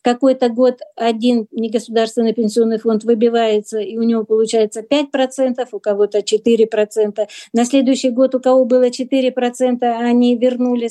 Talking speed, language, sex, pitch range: 130 wpm, Russian, female, 220-245 Hz